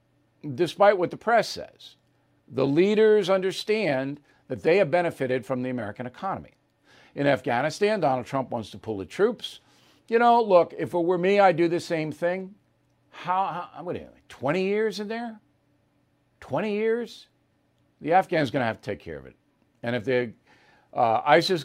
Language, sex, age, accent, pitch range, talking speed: English, male, 50-69, American, 140-190 Hz, 170 wpm